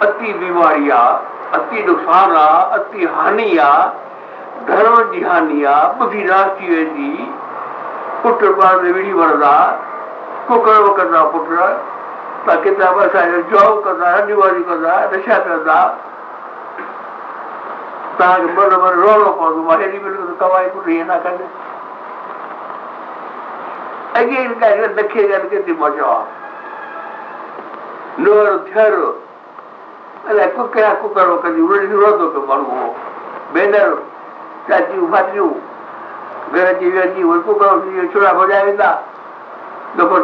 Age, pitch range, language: 60-79, 180-240 Hz, Hindi